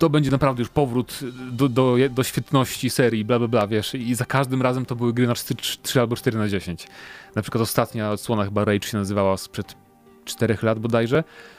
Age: 30-49